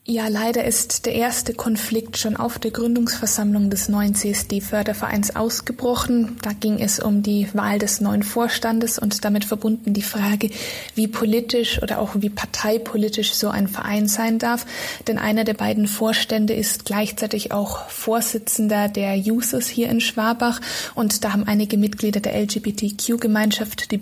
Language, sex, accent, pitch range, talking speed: German, female, German, 210-225 Hz, 150 wpm